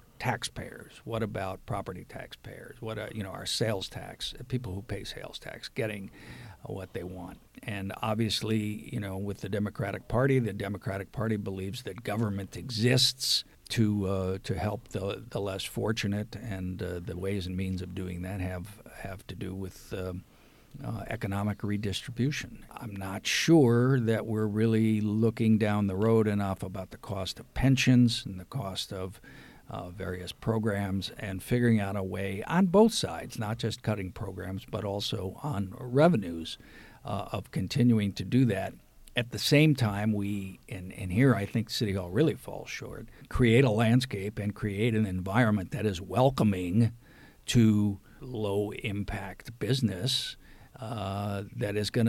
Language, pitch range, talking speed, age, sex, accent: English, 100-120 Hz, 160 wpm, 50-69, male, American